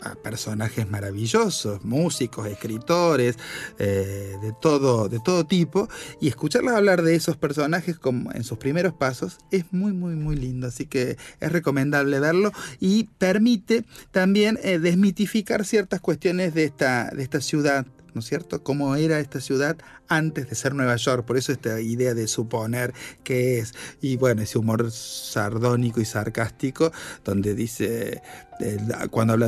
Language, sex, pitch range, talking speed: Spanish, male, 115-170 Hz, 155 wpm